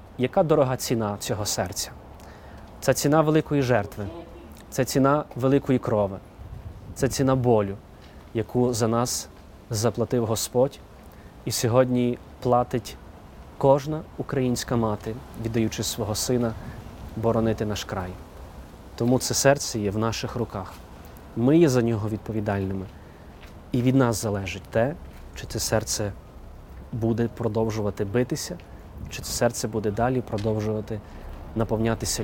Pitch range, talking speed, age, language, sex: 105-125 Hz, 115 wpm, 30-49, Ukrainian, male